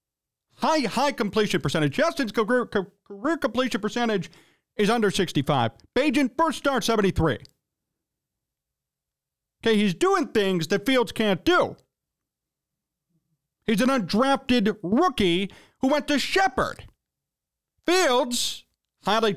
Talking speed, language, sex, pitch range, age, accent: 105 wpm, English, male, 195-265 Hz, 40-59, American